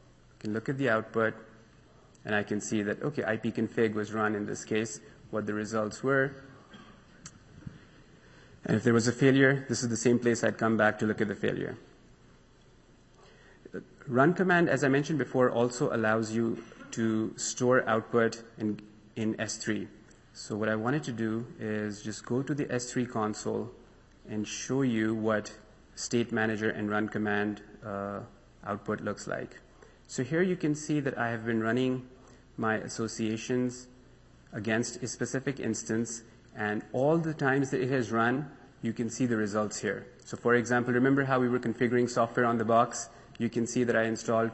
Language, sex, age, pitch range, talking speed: English, male, 30-49, 110-125 Hz, 175 wpm